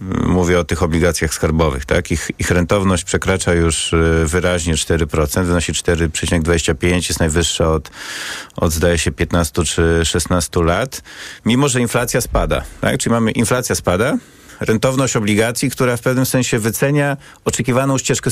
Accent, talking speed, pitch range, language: native, 140 wpm, 90-125 Hz, Polish